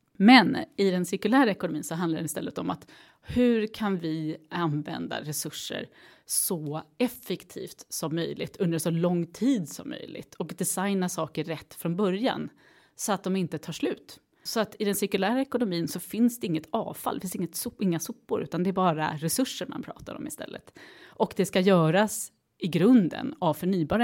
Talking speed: 180 wpm